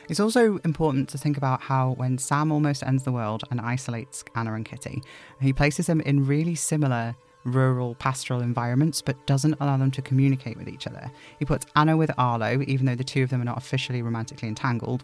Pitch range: 125-150 Hz